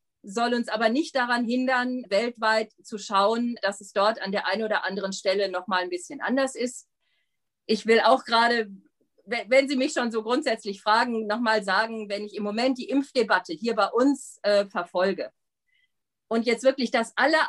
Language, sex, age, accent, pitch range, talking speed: German, female, 50-69, German, 205-255 Hz, 180 wpm